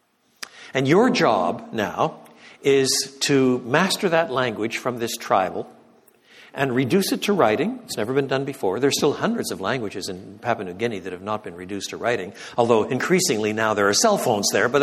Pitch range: 125-170 Hz